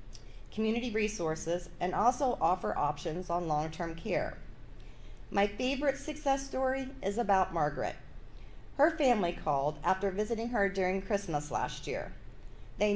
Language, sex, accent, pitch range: English, female, American, 170-230 Hz